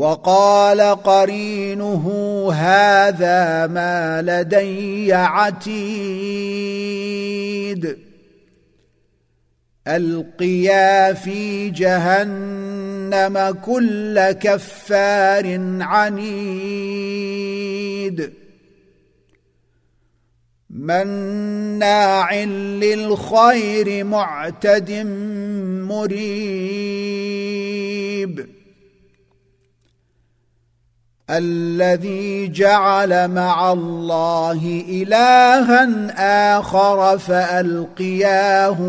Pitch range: 175-200 Hz